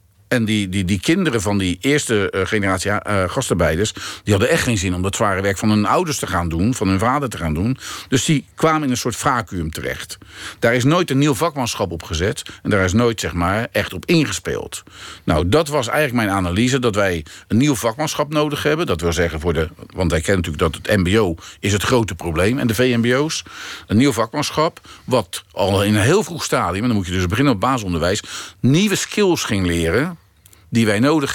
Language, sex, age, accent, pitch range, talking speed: Dutch, male, 50-69, Dutch, 90-125 Hz, 220 wpm